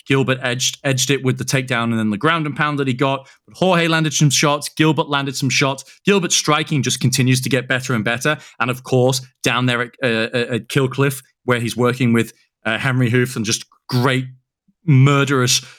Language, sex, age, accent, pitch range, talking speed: English, male, 30-49, British, 120-145 Hz, 205 wpm